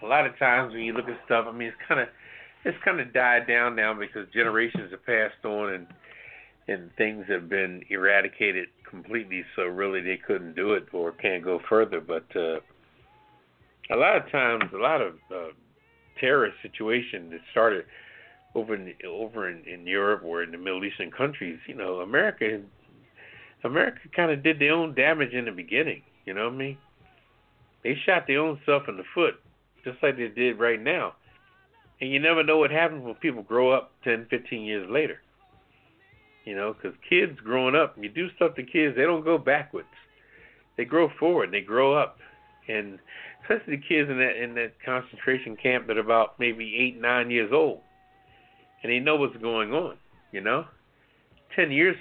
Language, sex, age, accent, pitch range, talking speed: English, male, 50-69, American, 110-145 Hz, 190 wpm